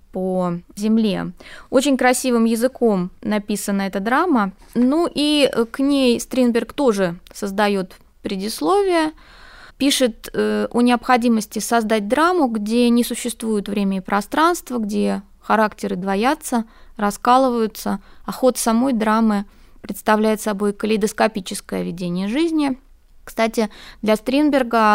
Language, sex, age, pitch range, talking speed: Russian, female, 20-39, 200-245 Hz, 105 wpm